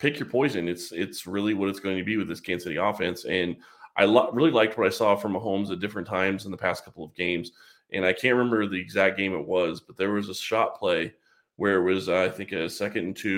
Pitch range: 90-110 Hz